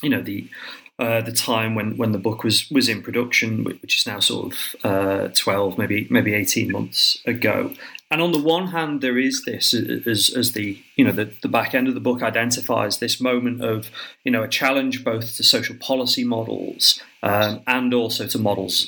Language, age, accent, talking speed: English, 30-49, British, 205 wpm